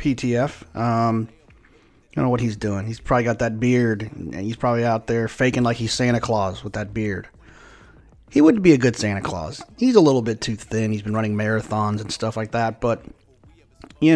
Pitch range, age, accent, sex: 110-135 Hz, 30-49, American, male